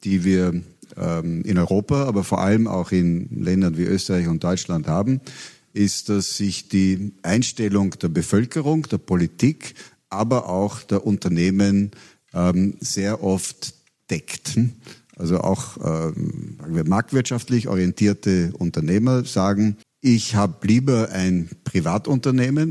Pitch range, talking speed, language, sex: 95-115 Hz, 120 wpm, German, male